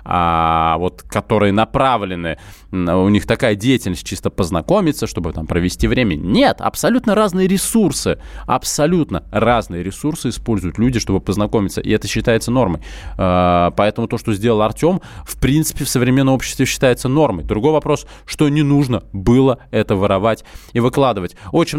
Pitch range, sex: 100-145 Hz, male